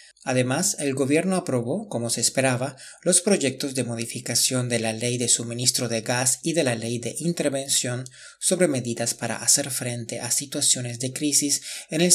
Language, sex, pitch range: Spanish, male, 120-145 Hz